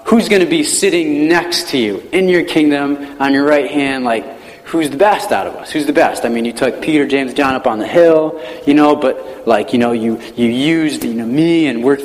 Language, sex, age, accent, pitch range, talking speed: English, male, 30-49, American, 130-175 Hz, 250 wpm